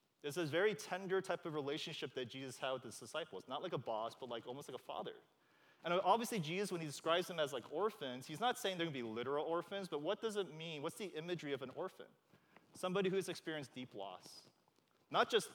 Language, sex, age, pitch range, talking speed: English, male, 30-49, 145-190 Hz, 230 wpm